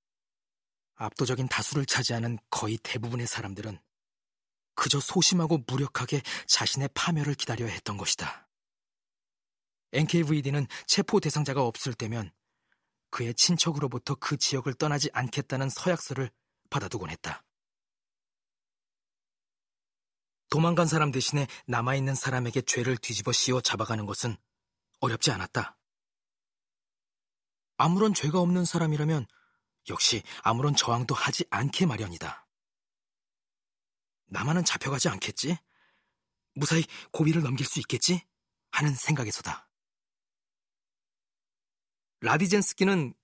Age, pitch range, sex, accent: 40-59, 120-160 Hz, male, native